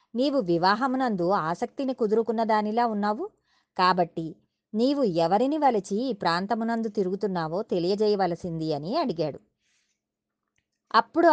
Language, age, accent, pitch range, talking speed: Telugu, 20-39, native, 170-250 Hz, 90 wpm